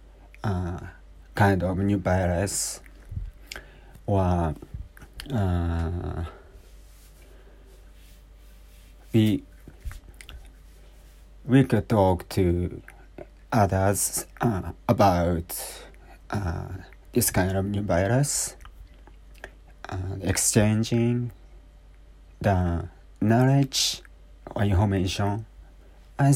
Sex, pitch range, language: male, 85-105 Hz, Japanese